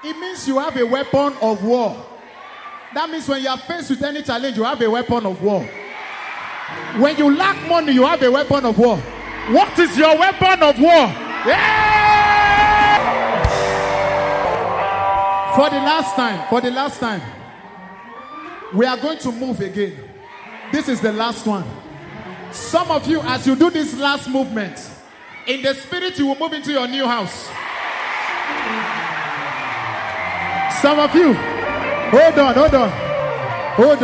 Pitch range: 220-295 Hz